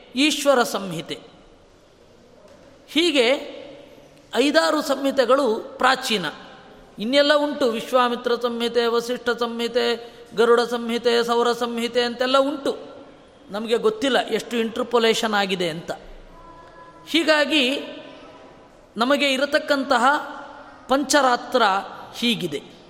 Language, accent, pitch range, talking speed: Kannada, native, 235-285 Hz, 75 wpm